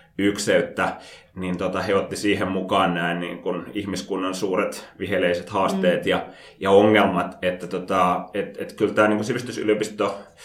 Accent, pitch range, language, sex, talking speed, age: native, 95-110 Hz, Finnish, male, 100 wpm, 30-49